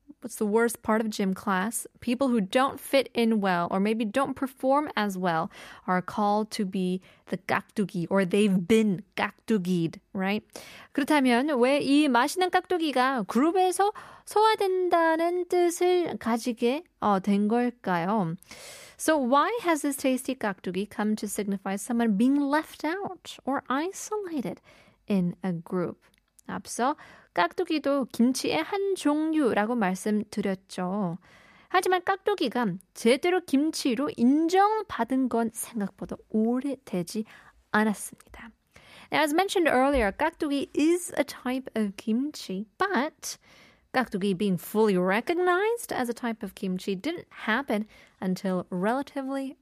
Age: 20-39